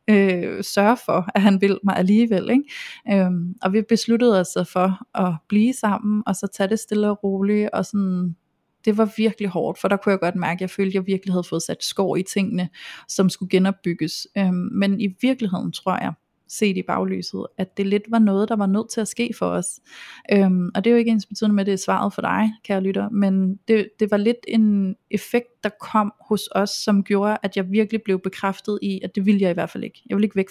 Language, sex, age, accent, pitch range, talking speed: Danish, female, 30-49, native, 185-215 Hz, 240 wpm